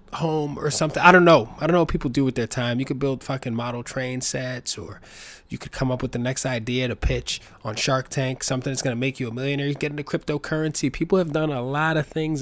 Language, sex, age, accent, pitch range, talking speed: English, male, 20-39, American, 115-145 Hz, 265 wpm